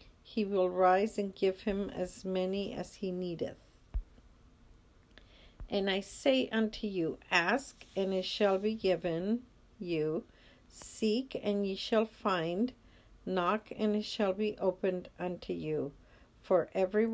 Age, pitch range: 50-69, 180-215 Hz